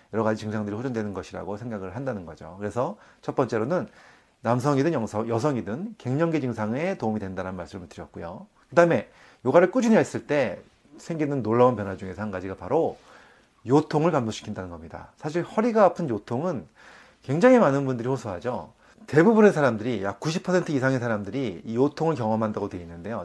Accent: native